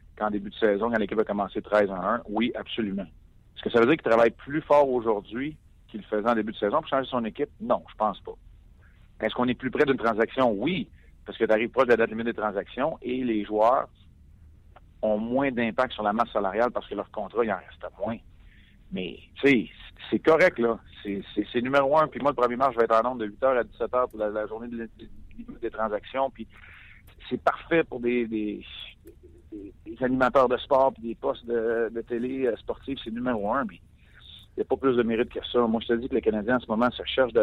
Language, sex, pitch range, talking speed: French, male, 105-125 Hz, 245 wpm